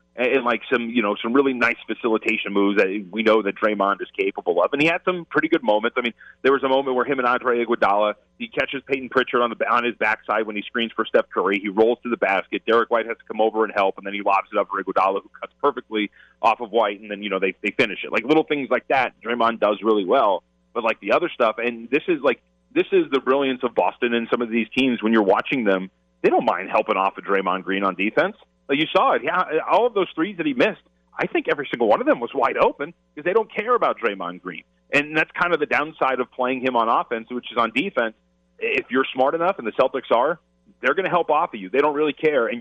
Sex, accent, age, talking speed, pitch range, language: male, American, 30-49, 270 wpm, 105-155 Hz, English